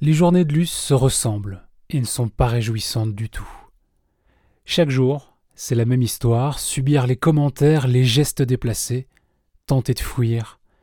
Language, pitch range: French, 110-145 Hz